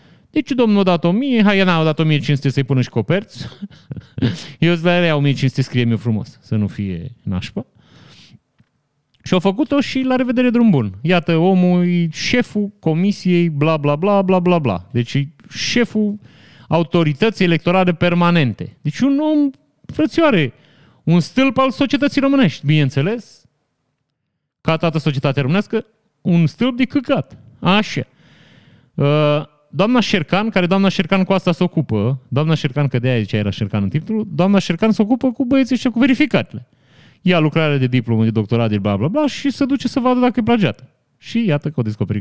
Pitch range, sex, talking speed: 135-215 Hz, male, 165 wpm